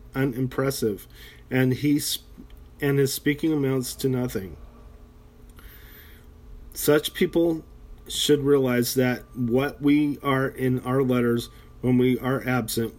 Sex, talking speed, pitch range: male, 115 wpm, 115-140 Hz